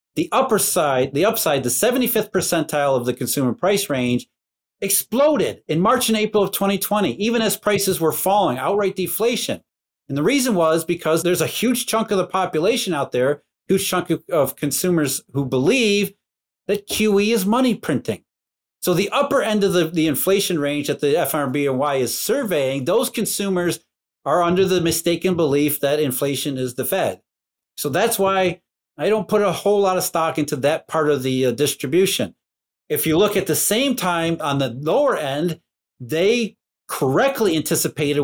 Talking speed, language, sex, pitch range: 180 wpm, English, male, 145-195 Hz